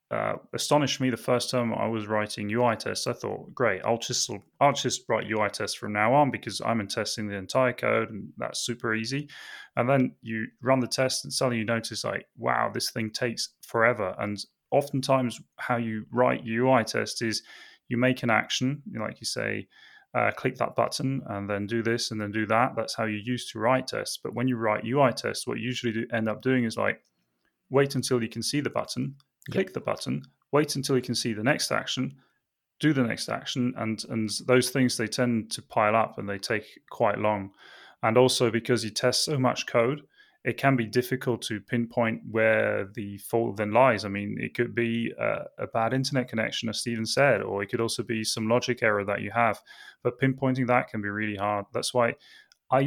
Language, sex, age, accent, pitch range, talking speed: English, male, 20-39, British, 110-130 Hz, 215 wpm